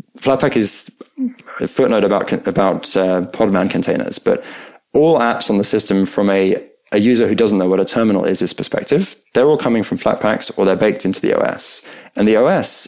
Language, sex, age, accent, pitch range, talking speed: English, male, 20-39, British, 100-135 Hz, 195 wpm